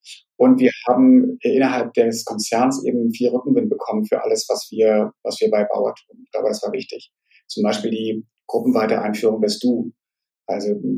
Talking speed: 175 wpm